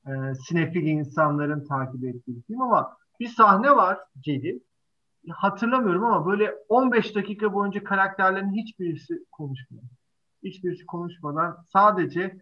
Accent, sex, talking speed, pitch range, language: native, male, 105 wpm, 160-205 Hz, Turkish